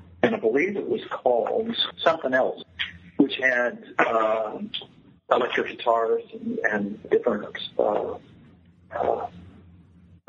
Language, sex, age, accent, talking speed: English, male, 60-79, American, 105 wpm